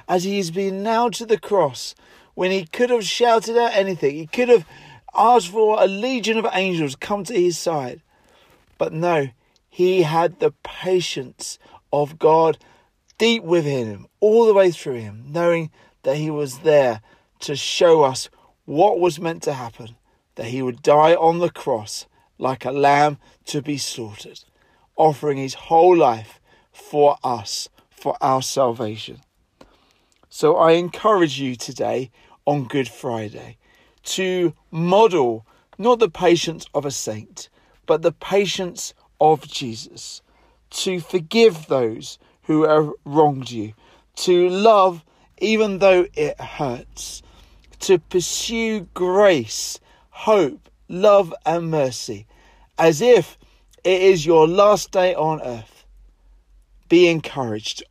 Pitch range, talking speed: 135-195 Hz, 135 wpm